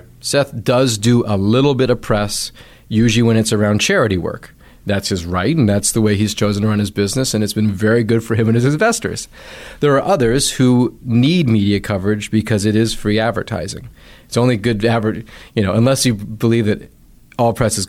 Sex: male